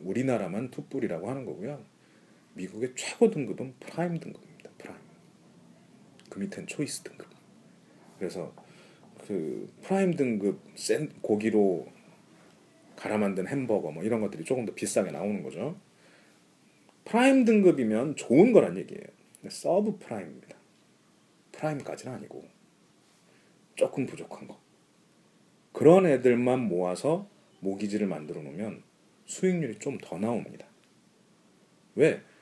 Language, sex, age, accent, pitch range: Korean, male, 40-59, native, 110-180 Hz